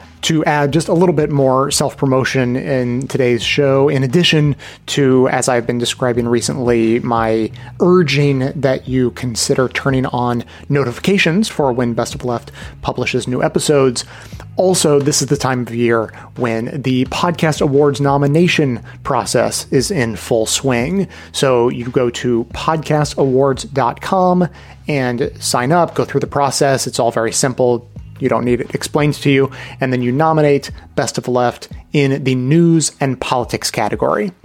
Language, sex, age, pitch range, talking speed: English, male, 30-49, 120-150 Hz, 155 wpm